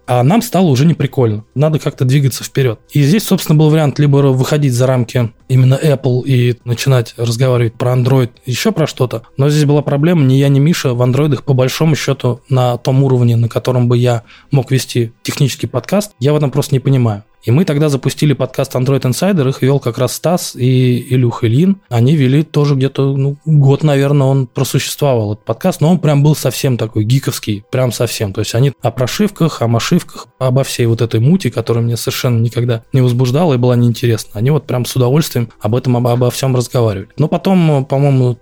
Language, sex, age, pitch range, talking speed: Russian, male, 20-39, 120-145 Hz, 200 wpm